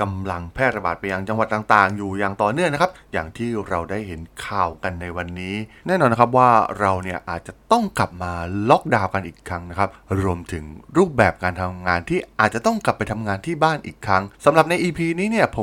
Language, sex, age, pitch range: Thai, male, 20-39, 90-125 Hz